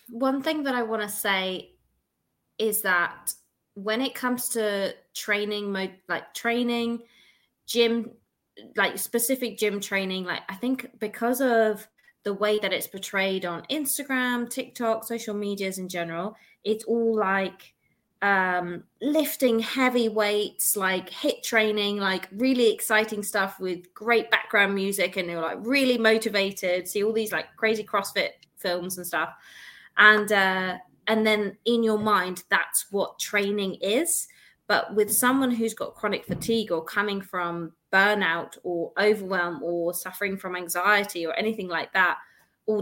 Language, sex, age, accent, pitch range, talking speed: English, female, 20-39, British, 185-225 Hz, 145 wpm